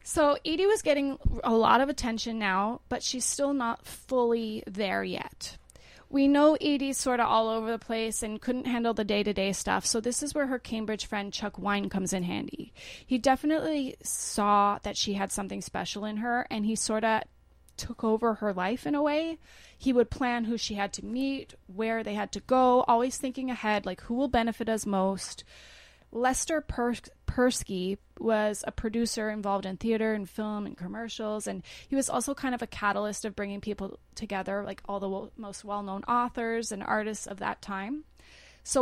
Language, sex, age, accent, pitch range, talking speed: English, female, 20-39, American, 205-250 Hz, 190 wpm